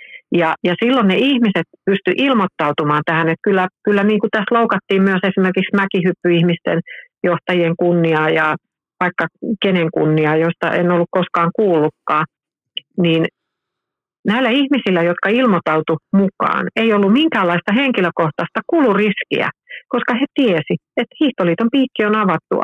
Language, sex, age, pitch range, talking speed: Finnish, female, 50-69, 165-205 Hz, 125 wpm